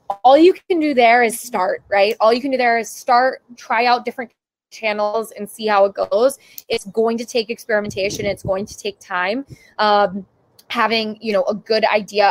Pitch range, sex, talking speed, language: 200-235 Hz, female, 200 wpm, English